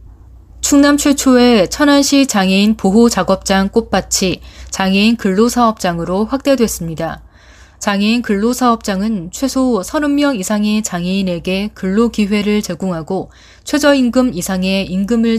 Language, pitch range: Korean, 185-235 Hz